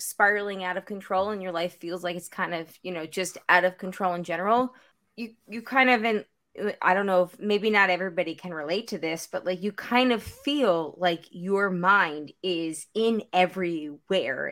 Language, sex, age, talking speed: English, female, 20-39, 200 wpm